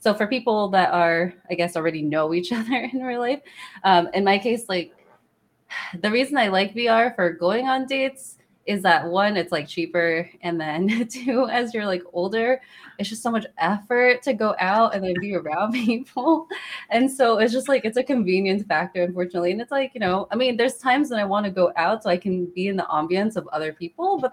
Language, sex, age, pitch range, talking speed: English, female, 20-39, 175-225 Hz, 220 wpm